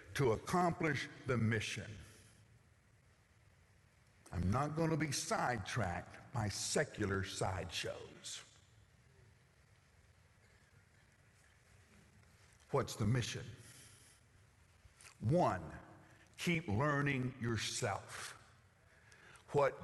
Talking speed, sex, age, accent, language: 65 wpm, male, 60-79, American, English